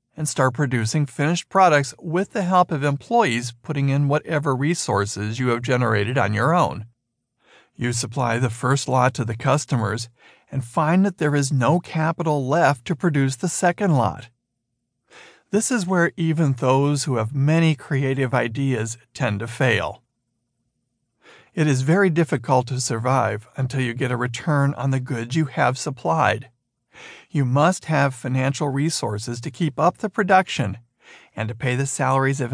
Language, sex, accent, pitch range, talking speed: English, male, American, 120-155 Hz, 160 wpm